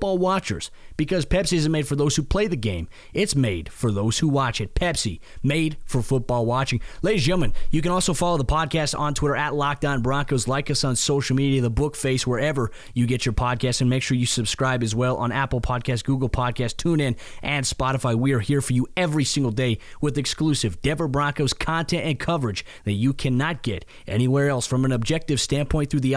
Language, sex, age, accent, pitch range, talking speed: English, male, 20-39, American, 125-150 Hz, 210 wpm